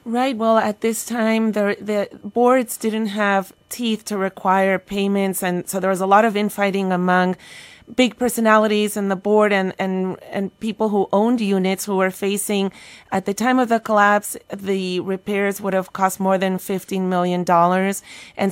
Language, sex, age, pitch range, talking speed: English, female, 30-49, 180-220 Hz, 175 wpm